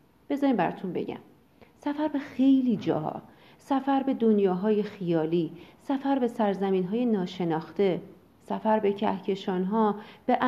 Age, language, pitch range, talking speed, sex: 40-59, Persian, 195-270 Hz, 110 wpm, female